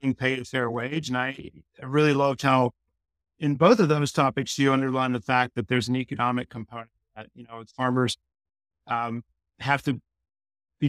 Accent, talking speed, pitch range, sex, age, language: American, 175 wpm, 120-140 Hz, male, 50-69, English